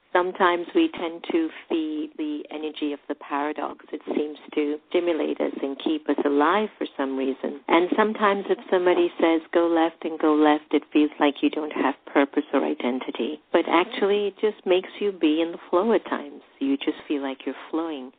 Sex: female